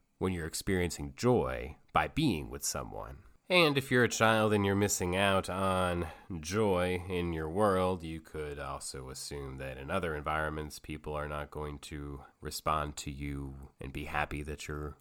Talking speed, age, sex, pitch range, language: 170 wpm, 30-49, male, 80-105 Hz, English